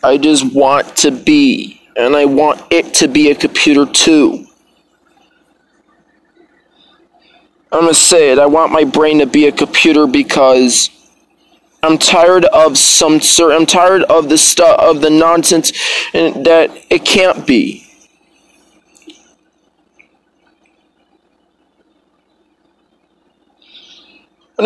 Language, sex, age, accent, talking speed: English, male, 20-39, American, 110 wpm